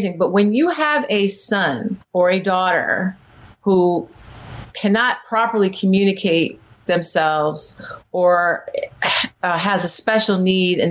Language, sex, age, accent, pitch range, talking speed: English, female, 40-59, American, 170-220 Hz, 115 wpm